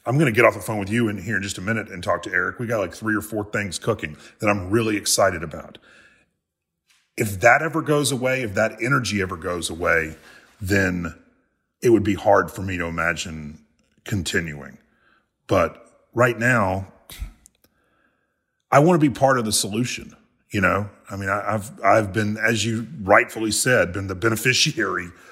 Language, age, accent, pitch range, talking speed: English, 40-59, American, 95-115 Hz, 185 wpm